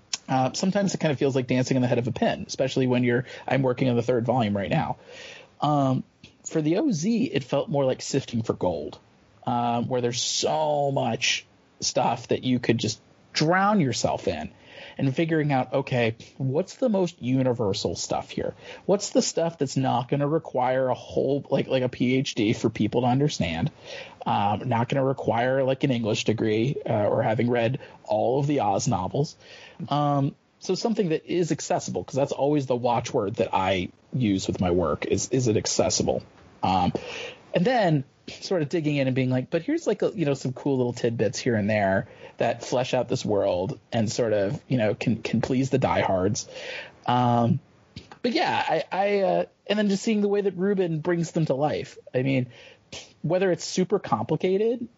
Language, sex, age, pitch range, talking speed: English, male, 30-49, 125-170 Hz, 195 wpm